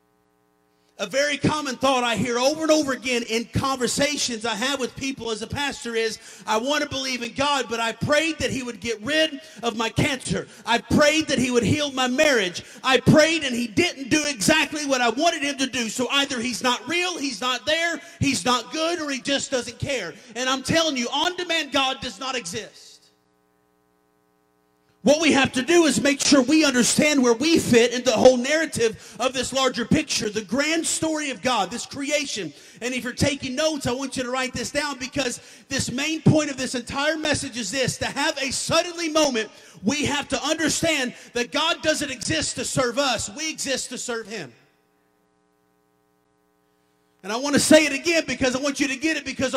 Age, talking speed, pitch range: 40-59, 205 wpm, 230-295 Hz